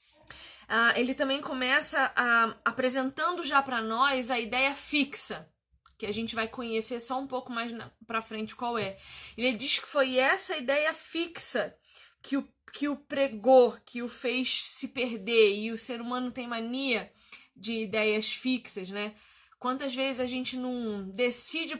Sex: female